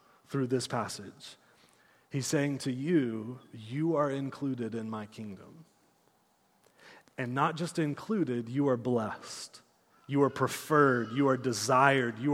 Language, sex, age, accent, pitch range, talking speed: English, male, 30-49, American, 125-155 Hz, 130 wpm